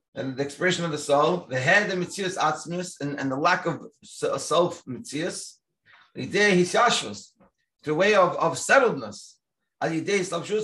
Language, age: English, 30-49